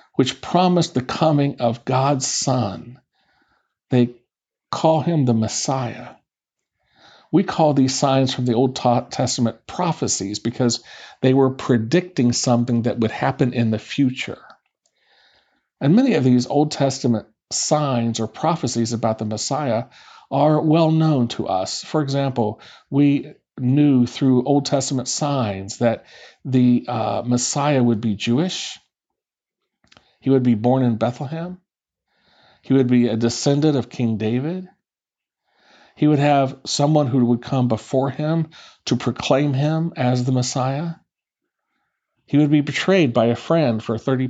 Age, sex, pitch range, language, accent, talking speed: 50-69, male, 120-150 Hz, English, American, 140 wpm